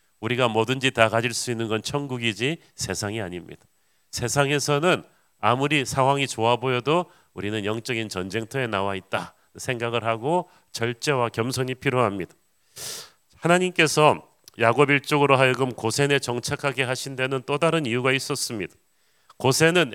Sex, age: male, 40-59